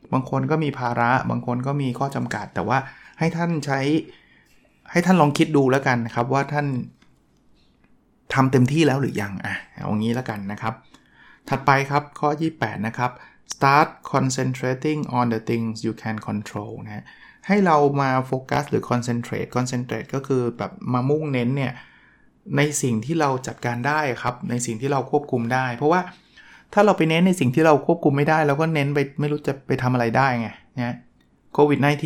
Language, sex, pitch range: Thai, male, 120-145 Hz